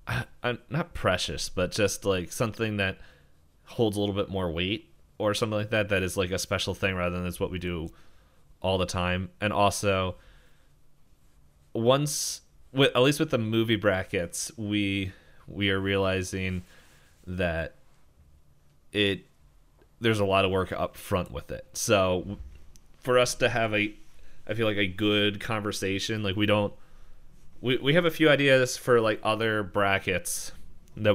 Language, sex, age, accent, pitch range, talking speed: English, male, 20-39, American, 85-105 Hz, 160 wpm